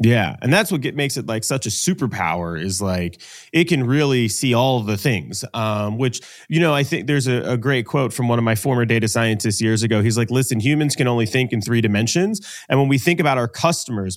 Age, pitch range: 30-49, 115-155 Hz